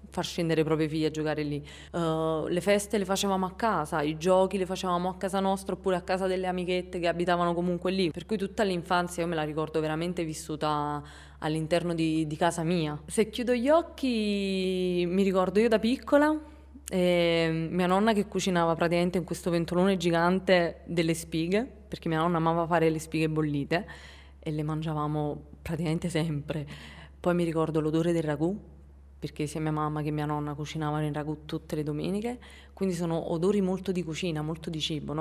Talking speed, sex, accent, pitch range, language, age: 180 wpm, female, native, 155-180 Hz, Italian, 20-39